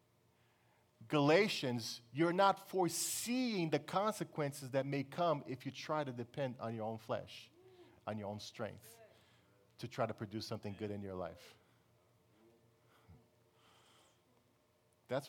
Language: English